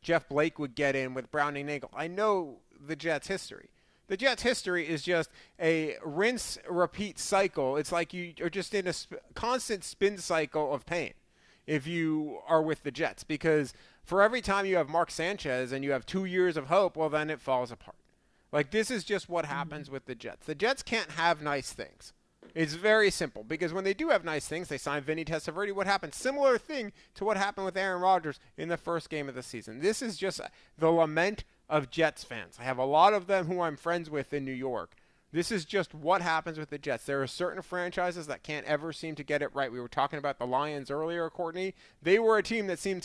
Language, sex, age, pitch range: English, male, 30-49, 145-185 Hz